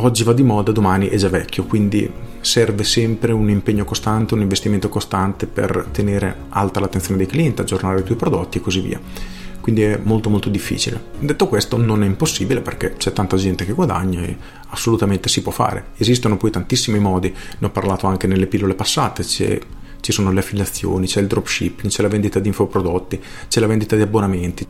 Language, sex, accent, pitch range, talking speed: Italian, male, native, 100-120 Hz, 195 wpm